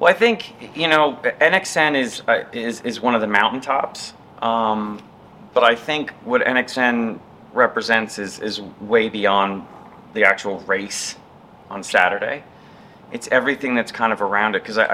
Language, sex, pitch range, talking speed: English, male, 105-130 Hz, 155 wpm